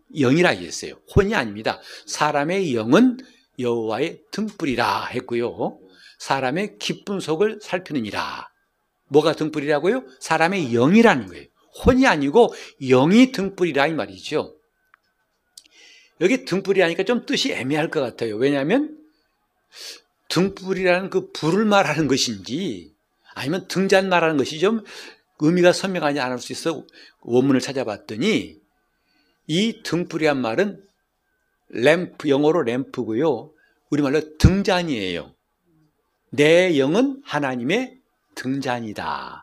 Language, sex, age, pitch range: Korean, male, 60-79, 150-220 Hz